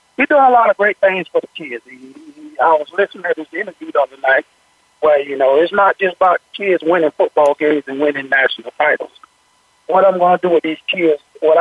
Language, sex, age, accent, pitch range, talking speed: English, male, 50-69, American, 160-210 Hz, 220 wpm